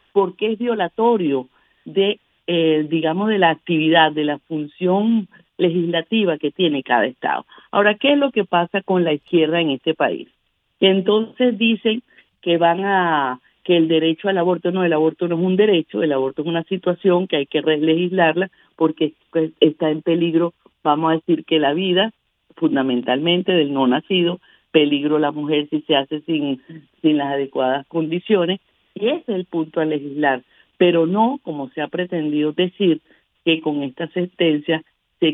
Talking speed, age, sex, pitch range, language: 170 wpm, 50-69, female, 155-195 Hz, Spanish